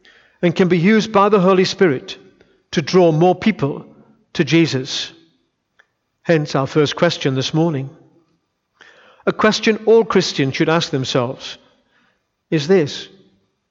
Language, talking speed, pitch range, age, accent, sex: English, 125 wpm, 155-215 Hz, 50-69, British, male